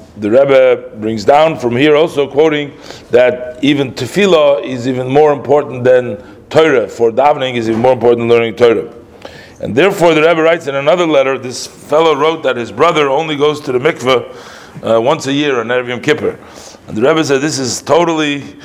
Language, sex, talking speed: English, male, 195 wpm